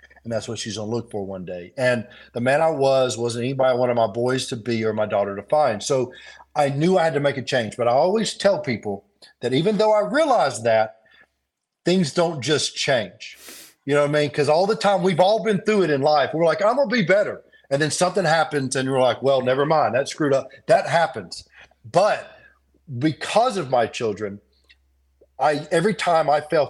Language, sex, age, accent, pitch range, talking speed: English, male, 50-69, American, 120-180 Hz, 220 wpm